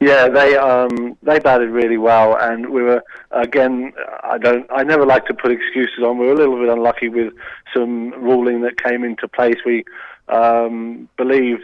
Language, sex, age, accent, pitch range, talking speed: English, male, 20-39, British, 115-125 Hz, 185 wpm